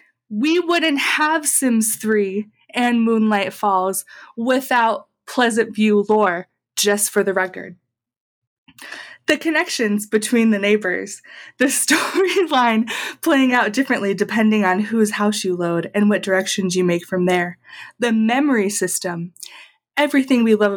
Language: English